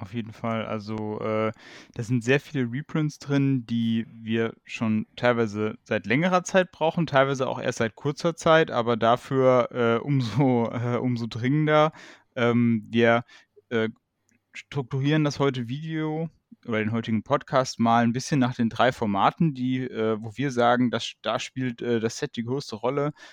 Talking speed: 165 wpm